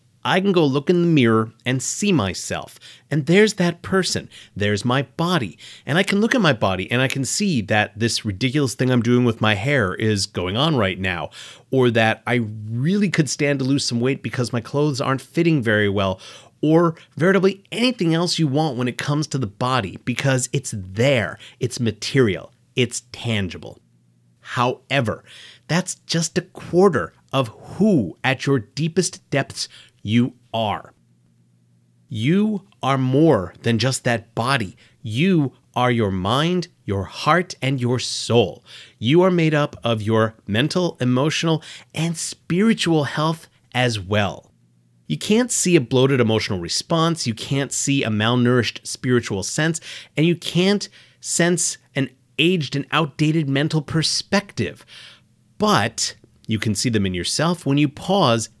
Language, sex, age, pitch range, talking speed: English, male, 30-49, 115-160 Hz, 160 wpm